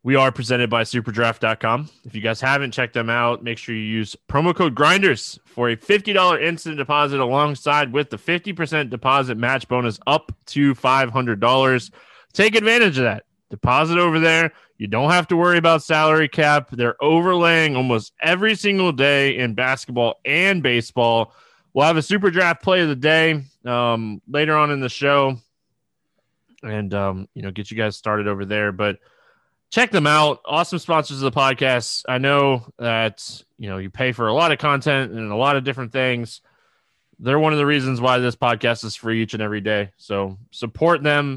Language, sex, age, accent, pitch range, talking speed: English, male, 20-39, American, 115-155 Hz, 185 wpm